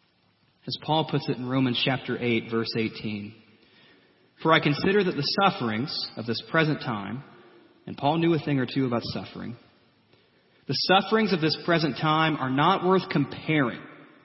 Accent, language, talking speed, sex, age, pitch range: American, English, 165 wpm, male, 30-49, 115-165 Hz